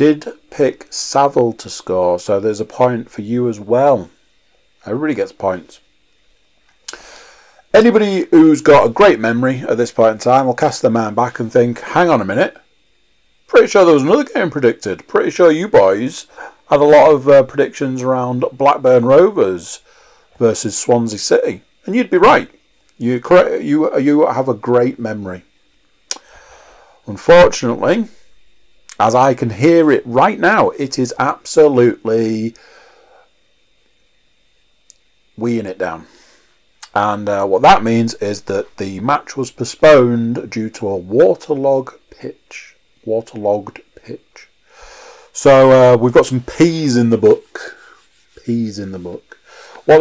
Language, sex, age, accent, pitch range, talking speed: English, male, 40-59, British, 115-150 Hz, 140 wpm